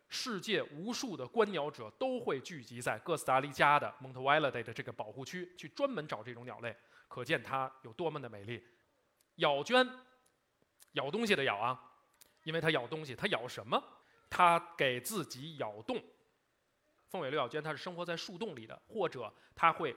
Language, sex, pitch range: Chinese, male, 120-180 Hz